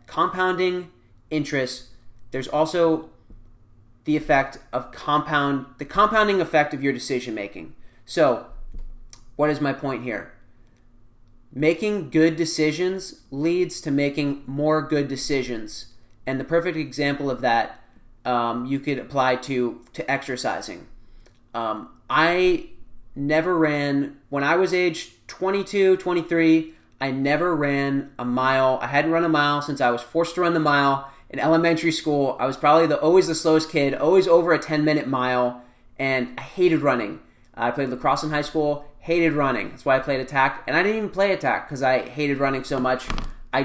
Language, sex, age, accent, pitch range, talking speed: English, male, 30-49, American, 125-155 Hz, 160 wpm